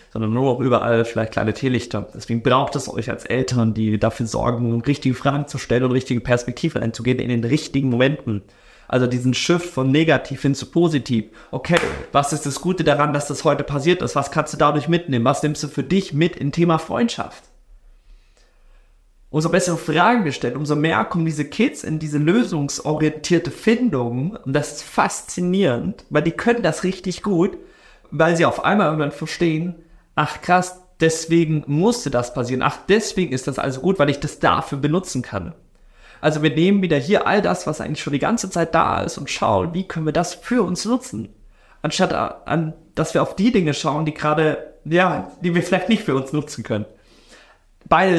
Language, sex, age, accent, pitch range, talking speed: German, male, 30-49, German, 125-170 Hz, 190 wpm